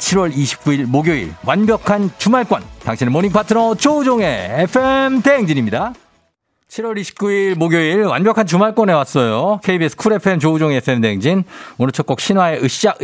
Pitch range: 110-175 Hz